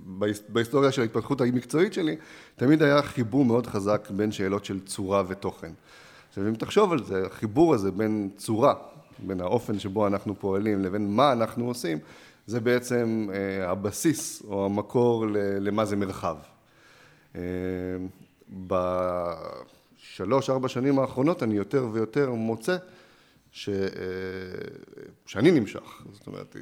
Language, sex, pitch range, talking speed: Hebrew, male, 100-140 Hz, 135 wpm